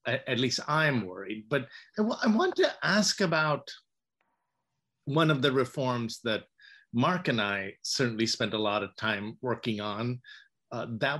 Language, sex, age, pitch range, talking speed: English, male, 50-69, 120-175 Hz, 150 wpm